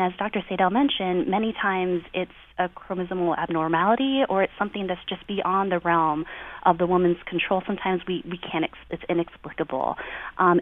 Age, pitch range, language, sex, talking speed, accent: 20-39, 165-195 Hz, English, female, 165 wpm, American